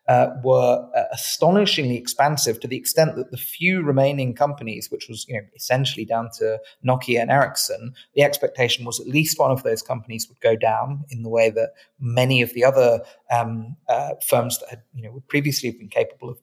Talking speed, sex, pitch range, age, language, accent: 200 wpm, male, 115-145 Hz, 30-49, English, British